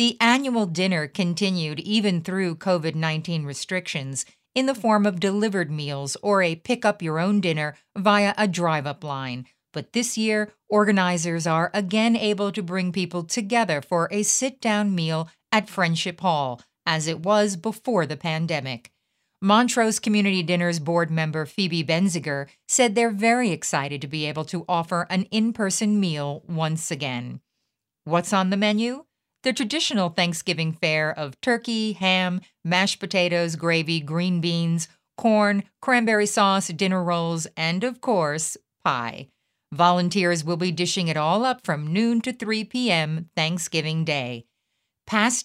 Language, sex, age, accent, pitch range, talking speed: English, female, 50-69, American, 160-210 Hz, 140 wpm